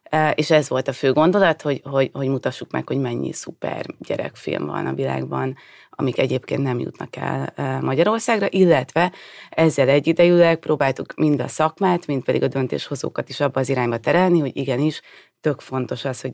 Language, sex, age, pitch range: Hungarian, female, 30-49, 130-155 Hz